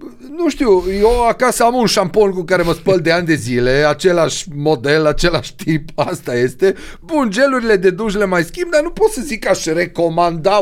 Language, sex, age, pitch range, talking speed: Romanian, male, 30-49, 130-190 Hz, 205 wpm